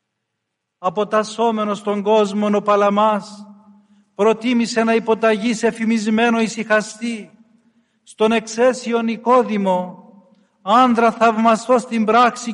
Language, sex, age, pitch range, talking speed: Greek, male, 50-69, 215-230 Hz, 85 wpm